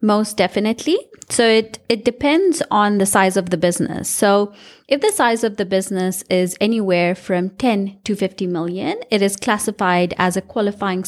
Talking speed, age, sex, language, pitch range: 175 wpm, 30-49, female, English, 180-230 Hz